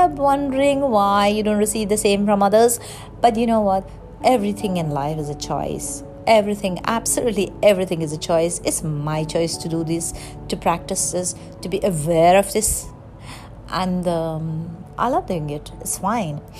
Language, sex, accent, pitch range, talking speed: English, female, Indian, 165-260 Hz, 170 wpm